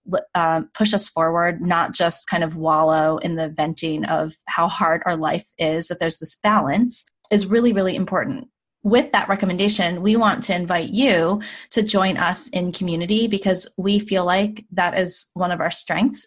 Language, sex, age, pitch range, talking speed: English, female, 20-39, 165-205 Hz, 180 wpm